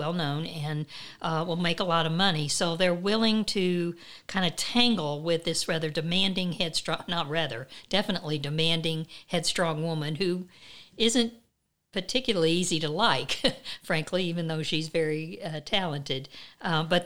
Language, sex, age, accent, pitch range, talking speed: English, female, 50-69, American, 150-185 Hz, 150 wpm